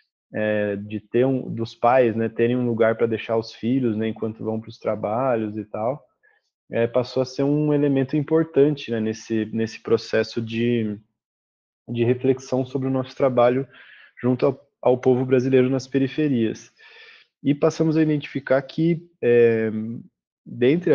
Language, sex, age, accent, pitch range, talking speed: Portuguese, male, 20-39, Brazilian, 110-130 Hz, 155 wpm